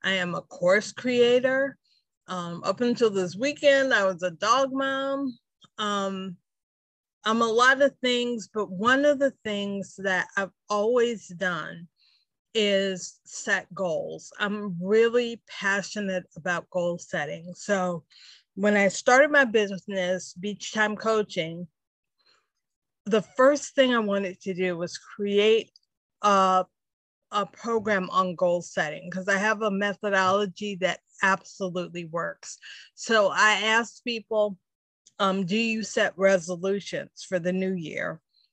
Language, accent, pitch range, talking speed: English, American, 185-230 Hz, 130 wpm